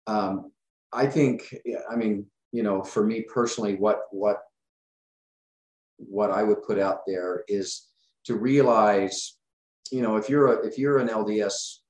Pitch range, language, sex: 90-110 Hz, English, male